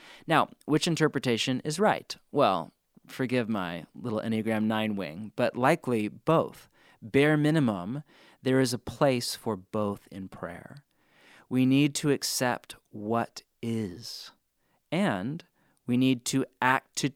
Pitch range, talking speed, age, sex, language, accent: 110-145 Hz, 130 wpm, 30-49, male, English, American